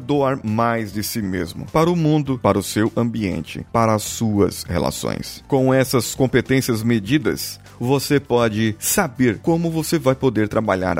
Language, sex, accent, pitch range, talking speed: Portuguese, male, Brazilian, 115-145 Hz, 155 wpm